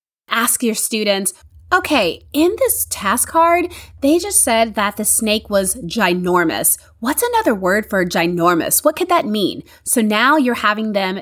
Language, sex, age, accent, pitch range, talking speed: English, female, 30-49, American, 195-285 Hz, 160 wpm